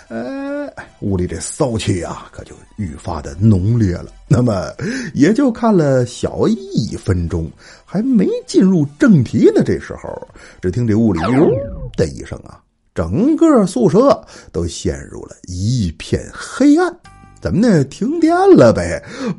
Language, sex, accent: Chinese, male, native